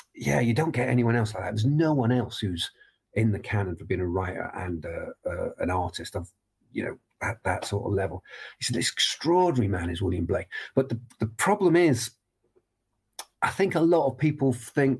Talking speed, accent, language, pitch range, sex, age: 210 wpm, British, English, 100-130 Hz, male, 40-59